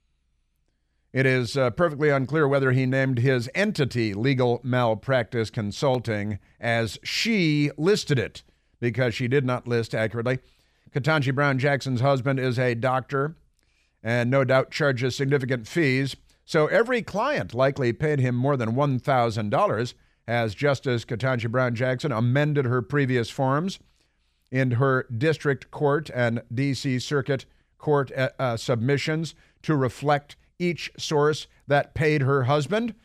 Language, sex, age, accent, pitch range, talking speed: English, male, 50-69, American, 120-150 Hz, 135 wpm